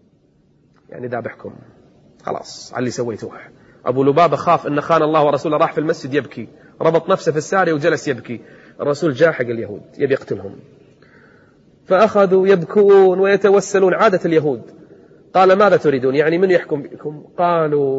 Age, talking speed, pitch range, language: 30-49, 140 wpm, 140-175 Hz, Arabic